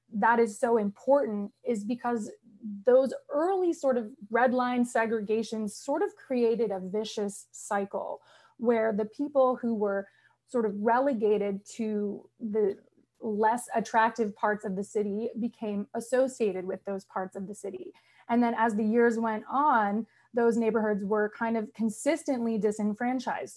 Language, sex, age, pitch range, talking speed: English, female, 20-39, 205-240 Hz, 145 wpm